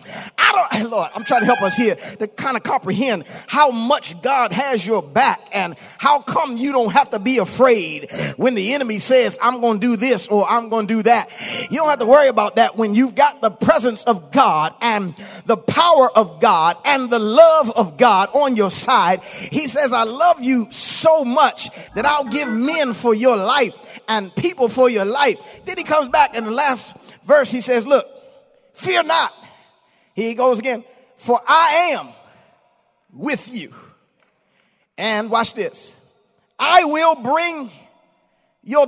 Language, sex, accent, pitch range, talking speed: English, male, American, 230-305 Hz, 180 wpm